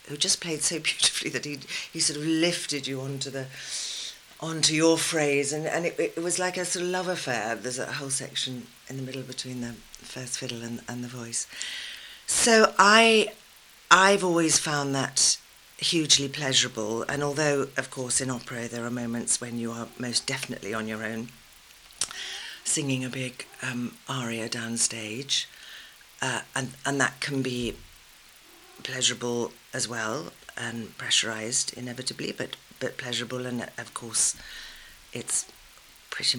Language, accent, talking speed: English, British, 155 wpm